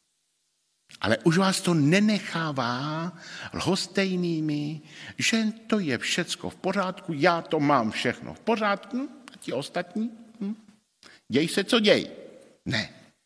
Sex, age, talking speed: male, 50-69, 120 wpm